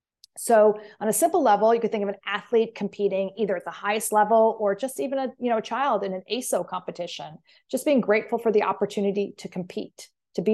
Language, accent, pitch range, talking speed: English, American, 195-230 Hz, 220 wpm